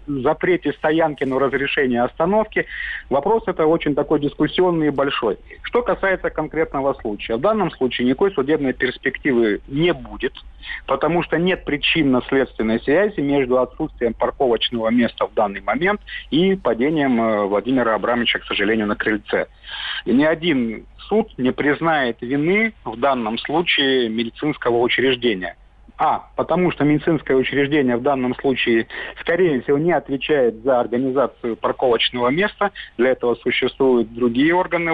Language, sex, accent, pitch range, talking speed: Russian, male, native, 120-160 Hz, 135 wpm